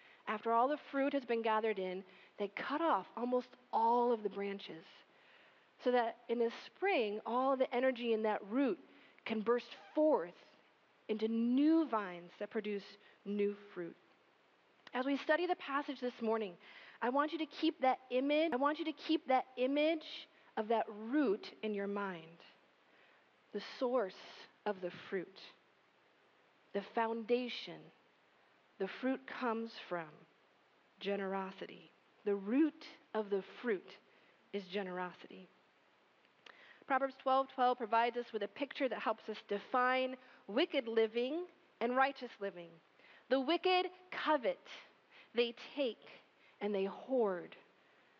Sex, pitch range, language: female, 205-275 Hz, English